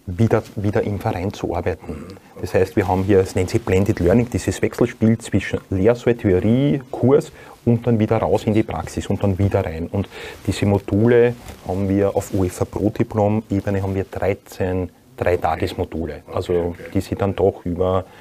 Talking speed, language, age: 180 wpm, German, 30-49